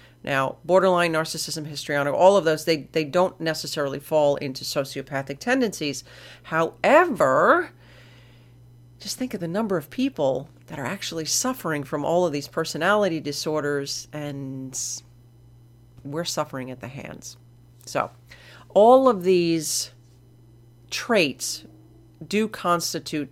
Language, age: English, 40-59